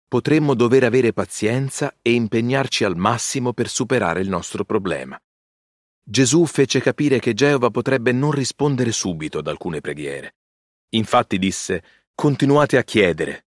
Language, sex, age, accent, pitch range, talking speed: Italian, male, 40-59, native, 100-135 Hz, 135 wpm